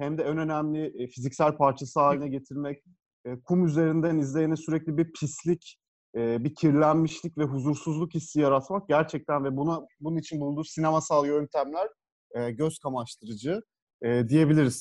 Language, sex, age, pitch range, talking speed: Turkish, male, 40-59, 135-165 Hz, 125 wpm